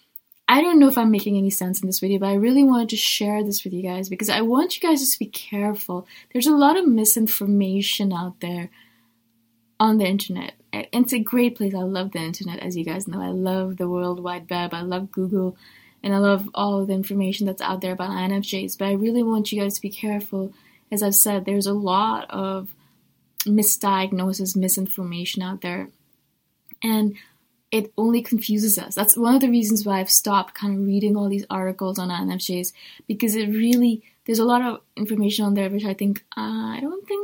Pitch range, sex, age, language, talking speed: 190-225 Hz, female, 20-39, English, 210 wpm